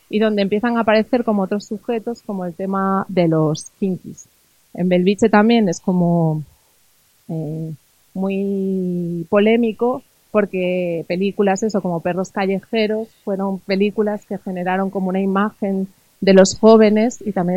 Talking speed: 135 wpm